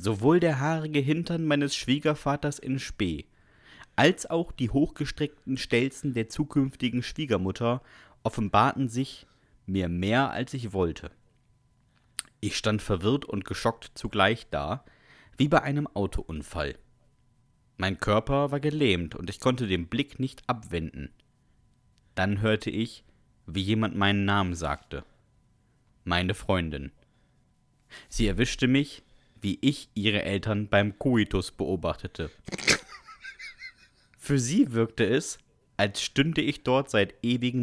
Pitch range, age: 100-130 Hz, 30-49